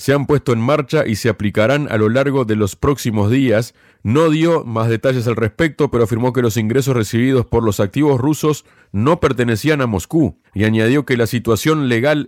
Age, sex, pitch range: 40-59, male, 110-140 Hz